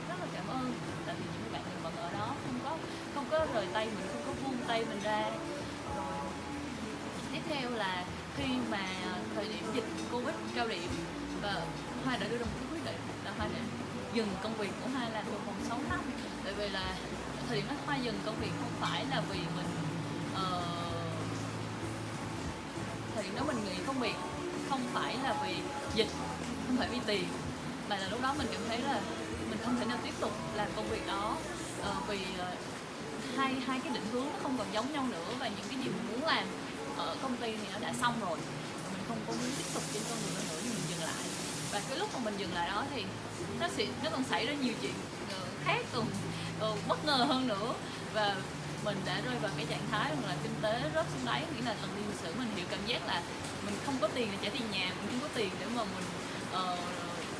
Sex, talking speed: female, 225 wpm